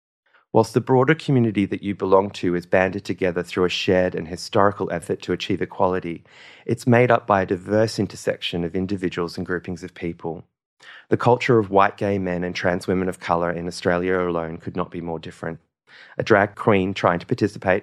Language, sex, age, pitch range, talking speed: English, male, 30-49, 85-100 Hz, 195 wpm